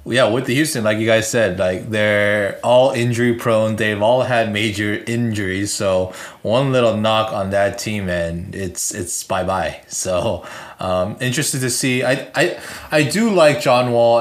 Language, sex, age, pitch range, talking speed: English, male, 20-39, 105-120 Hz, 175 wpm